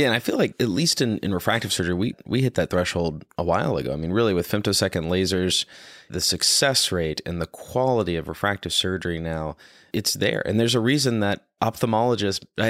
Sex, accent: male, American